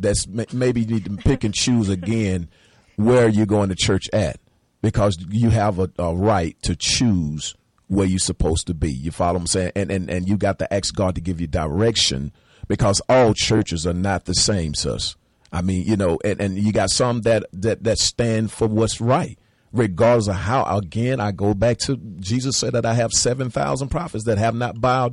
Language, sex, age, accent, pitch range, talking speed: English, male, 40-59, American, 90-115 Hz, 210 wpm